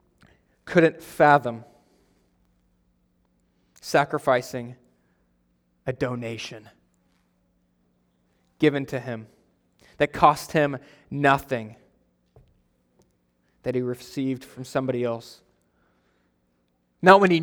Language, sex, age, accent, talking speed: English, male, 20-39, American, 70 wpm